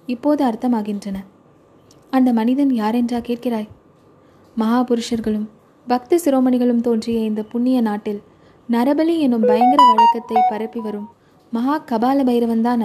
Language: Tamil